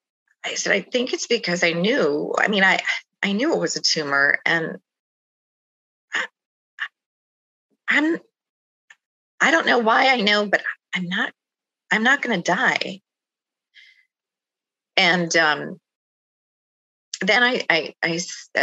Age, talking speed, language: 30-49, 125 wpm, English